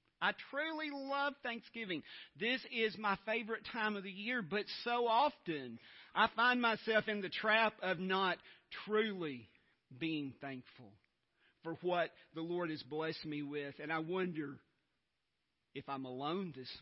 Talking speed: 145 wpm